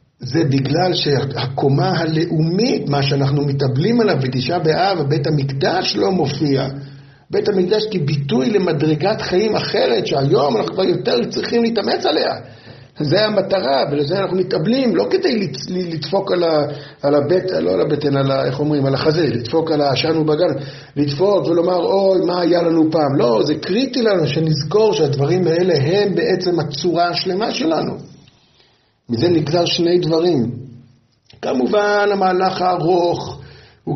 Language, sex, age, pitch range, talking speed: Hebrew, male, 60-79, 135-170 Hz, 135 wpm